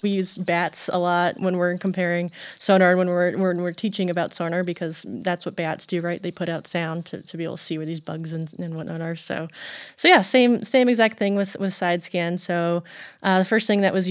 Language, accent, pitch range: English, American, 170-190 Hz